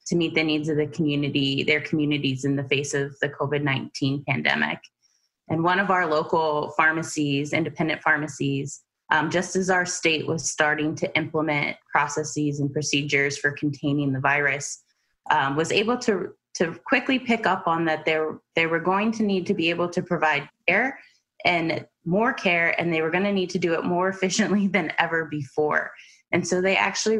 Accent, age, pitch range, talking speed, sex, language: American, 20-39, 150-170 Hz, 180 wpm, female, English